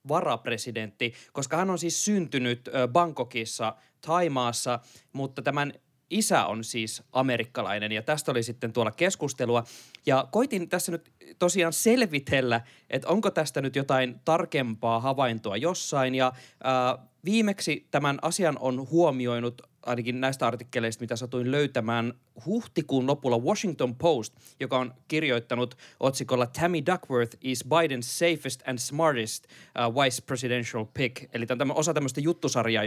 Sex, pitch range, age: male, 120-155 Hz, 20-39